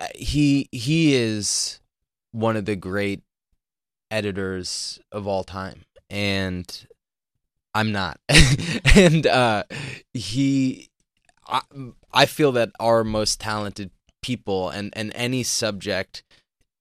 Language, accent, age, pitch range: English, American, 20-39, 90-105 Hz